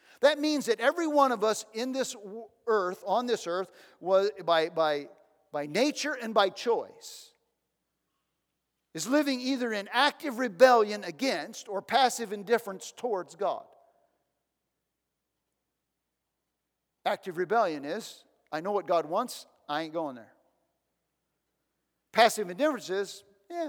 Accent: American